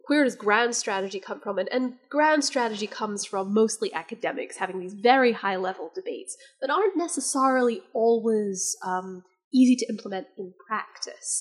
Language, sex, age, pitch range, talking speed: English, female, 20-39, 195-250 Hz, 155 wpm